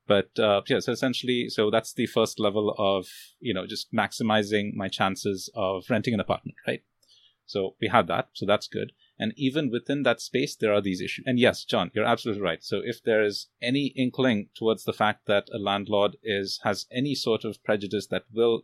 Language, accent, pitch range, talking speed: English, Indian, 100-125 Hz, 205 wpm